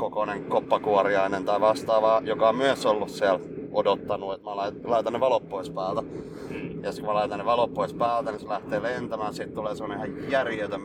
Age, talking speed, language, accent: 30-49, 185 wpm, Finnish, native